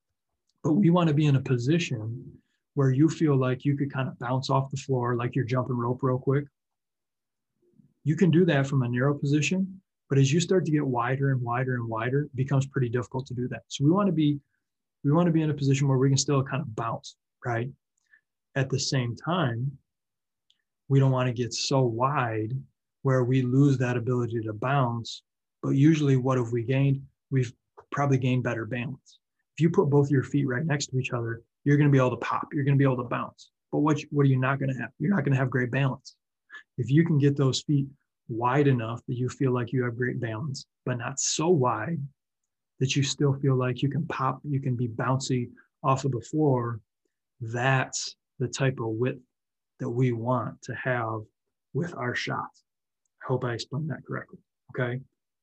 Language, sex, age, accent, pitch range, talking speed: English, male, 20-39, American, 125-145 Hz, 205 wpm